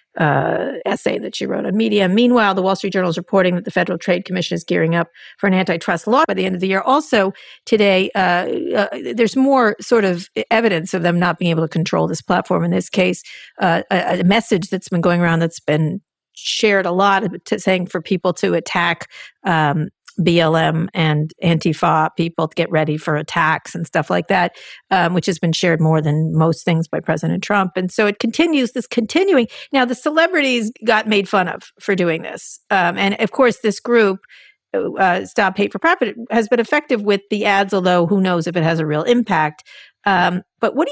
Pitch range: 170-225 Hz